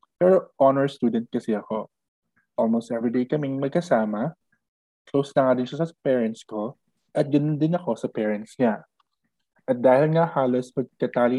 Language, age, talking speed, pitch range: Filipino, 20-39, 150 wpm, 115-155 Hz